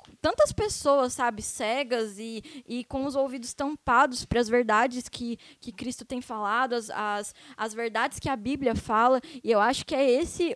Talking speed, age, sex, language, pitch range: 175 wpm, 10-29, female, Portuguese, 230-275 Hz